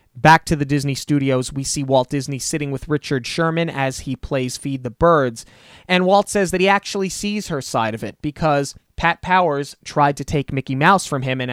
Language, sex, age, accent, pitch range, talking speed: English, male, 20-39, American, 135-170 Hz, 215 wpm